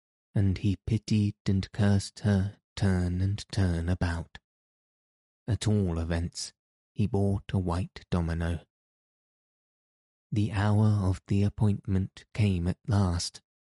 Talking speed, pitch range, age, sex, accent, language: 115 wpm, 90-105 Hz, 20-39, male, British, English